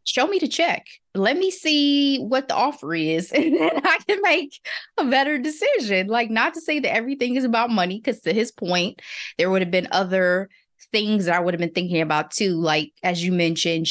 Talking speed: 215 wpm